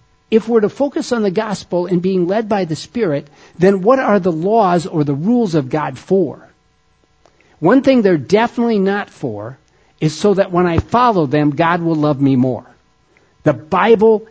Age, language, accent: 50-69, English, American